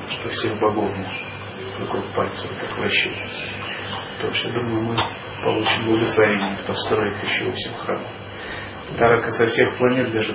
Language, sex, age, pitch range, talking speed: Russian, male, 30-49, 110-125 Hz, 130 wpm